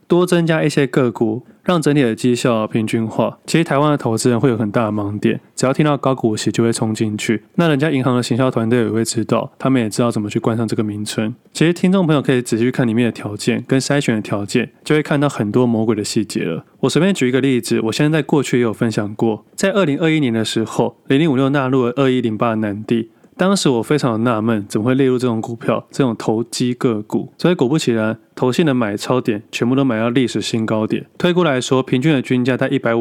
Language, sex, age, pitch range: Chinese, male, 20-39, 115-140 Hz